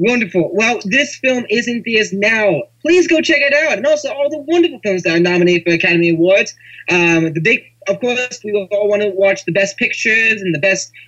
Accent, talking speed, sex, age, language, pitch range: American, 215 wpm, male, 20-39, English, 155-220 Hz